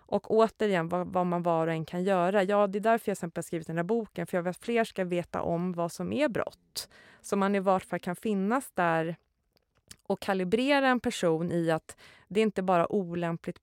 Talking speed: 230 wpm